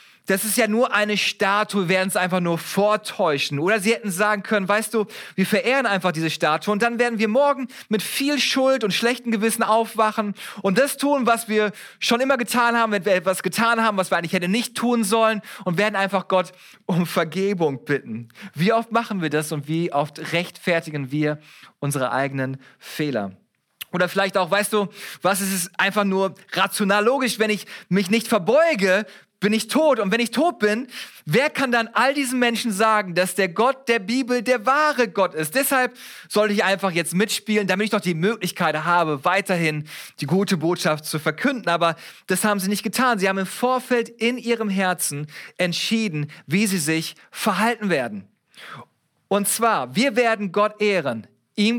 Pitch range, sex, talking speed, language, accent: 180-230 Hz, male, 190 wpm, German, German